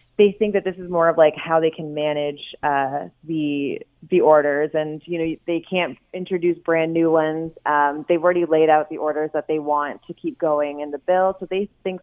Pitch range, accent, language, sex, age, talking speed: 155-180 Hz, American, English, female, 20-39, 220 wpm